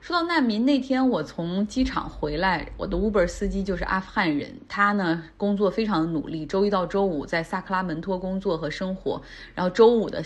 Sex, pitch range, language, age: female, 165-210 Hz, Chinese, 30-49